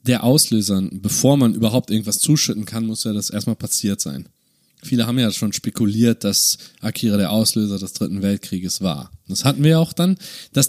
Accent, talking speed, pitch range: German, 190 wpm, 105-140 Hz